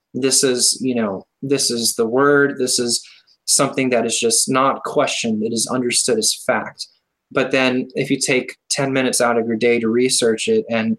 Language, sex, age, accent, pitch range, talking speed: English, male, 20-39, American, 115-135 Hz, 195 wpm